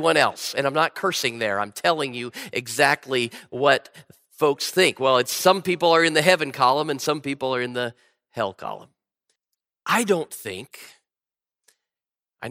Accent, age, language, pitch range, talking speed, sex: American, 40-59, English, 170-210 Hz, 165 wpm, male